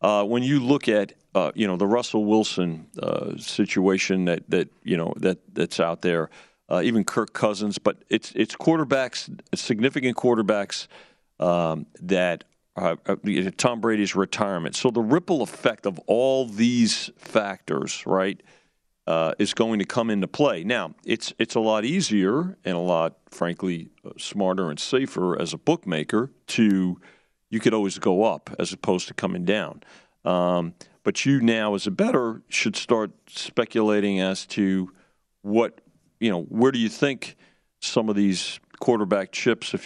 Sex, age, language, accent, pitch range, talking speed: male, 50-69, English, American, 95-115 Hz, 160 wpm